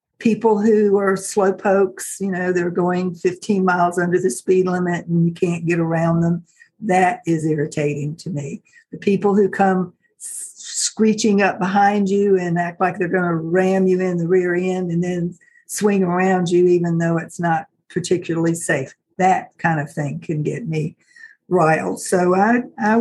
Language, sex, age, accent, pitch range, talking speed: English, female, 60-79, American, 170-200 Hz, 175 wpm